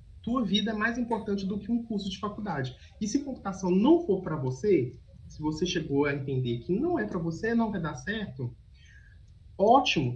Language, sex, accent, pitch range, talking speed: Portuguese, male, Brazilian, 130-215 Hz, 195 wpm